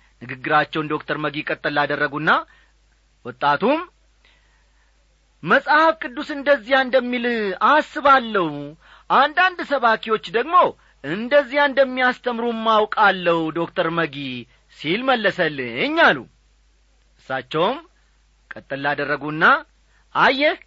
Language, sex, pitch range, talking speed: Amharic, male, 150-240 Hz, 75 wpm